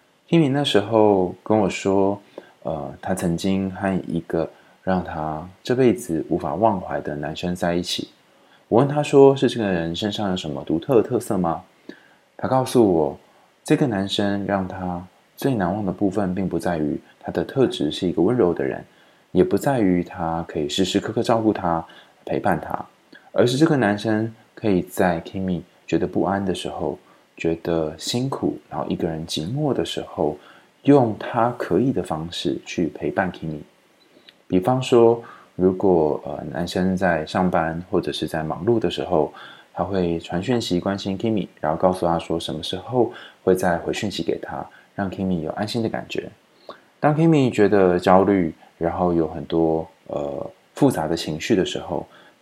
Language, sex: Chinese, male